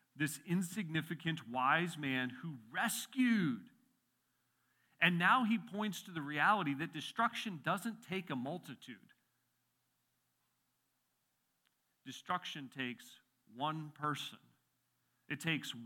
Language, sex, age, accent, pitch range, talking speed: English, male, 40-59, American, 150-235 Hz, 95 wpm